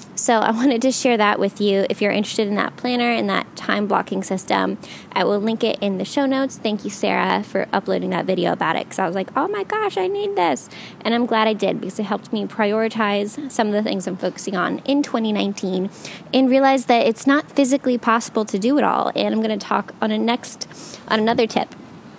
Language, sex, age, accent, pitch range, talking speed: English, female, 20-39, American, 200-250 Hz, 240 wpm